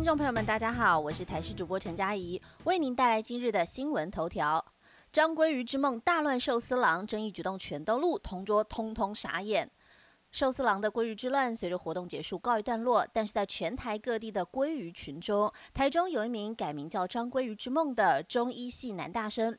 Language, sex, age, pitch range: Chinese, female, 30-49, 205-260 Hz